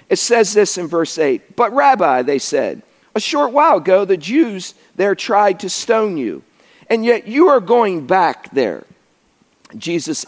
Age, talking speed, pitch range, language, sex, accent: 50-69, 170 wpm, 185-250 Hz, English, male, American